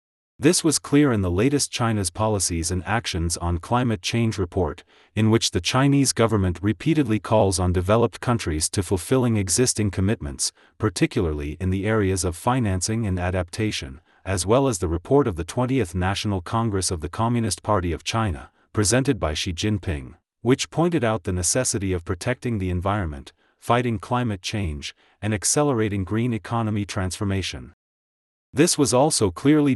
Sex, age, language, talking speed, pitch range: male, 40-59, English, 155 wpm, 90-120 Hz